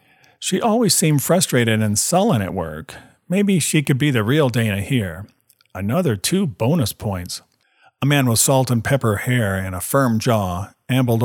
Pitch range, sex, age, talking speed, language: 110-145 Hz, male, 50-69, 170 wpm, English